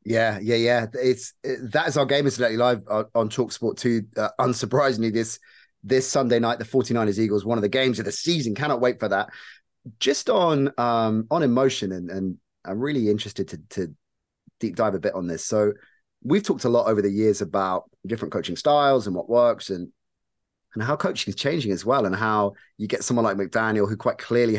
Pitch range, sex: 105-130 Hz, male